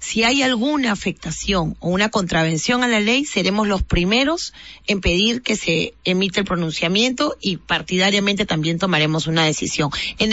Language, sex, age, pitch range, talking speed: Spanish, female, 30-49, 175-220 Hz, 155 wpm